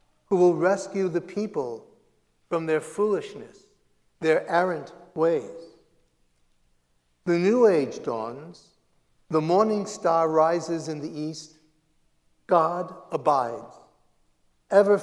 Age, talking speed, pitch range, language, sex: 60-79, 100 wpm, 155-200 Hz, English, male